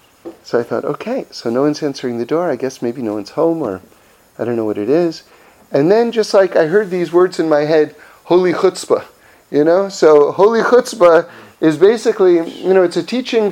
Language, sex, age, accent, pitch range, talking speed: English, male, 40-59, American, 160-225 Hz, 215 wpm